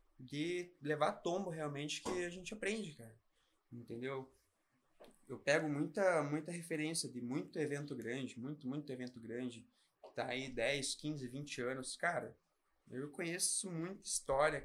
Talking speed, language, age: 150 wpm, Portuguese, 20-39